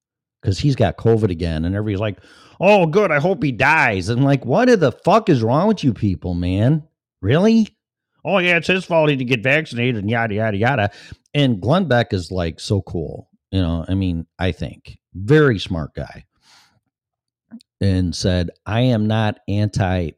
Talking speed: 185 wpm